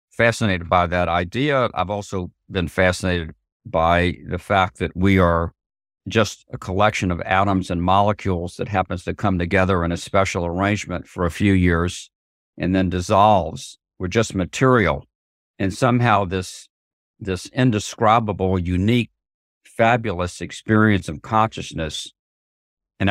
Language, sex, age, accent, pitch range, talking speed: English, male, 50-69, American, 90-110 Hz, 130 wpm